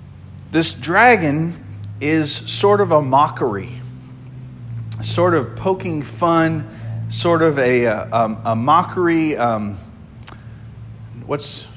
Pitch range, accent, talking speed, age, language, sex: 120-180 Hz, American, 95 wpm, 40-59, English, male